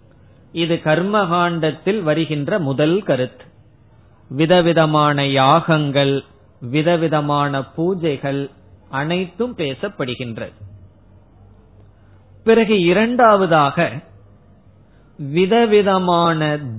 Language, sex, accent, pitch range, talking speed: Tamil, male, native, 125-175 Hz, 45 wpm